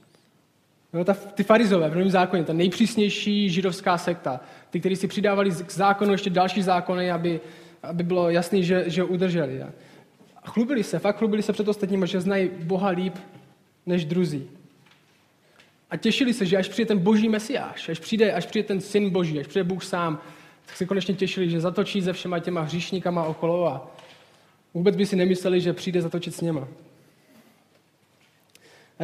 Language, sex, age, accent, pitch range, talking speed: Czech, male, 20-39, native, 155-190 Hz, 170 wpm